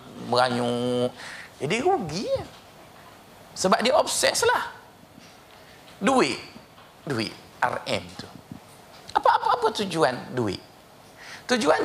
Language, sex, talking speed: Malay, male, 85 wpm